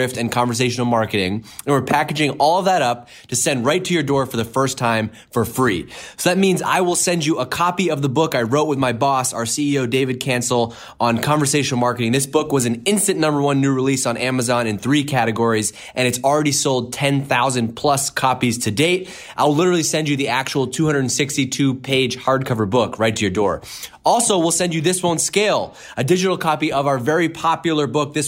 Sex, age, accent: male, 20-39, American